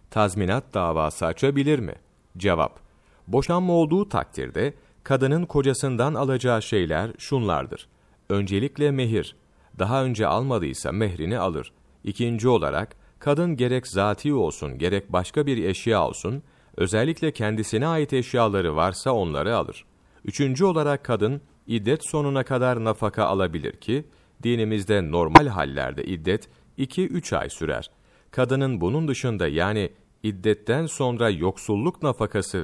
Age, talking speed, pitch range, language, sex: 40-59, 115 wpm, 100-135 Hz, Turkish, male